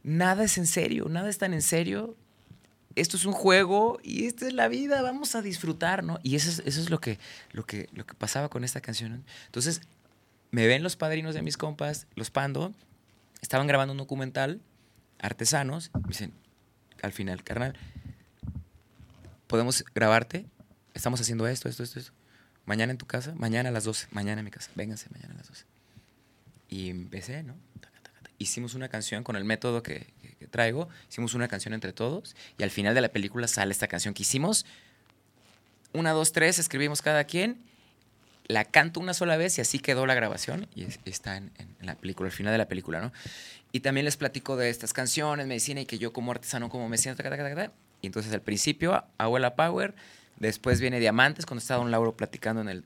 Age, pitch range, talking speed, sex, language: 30-49, 110-150 Hz, 200 wpm, male, Spanish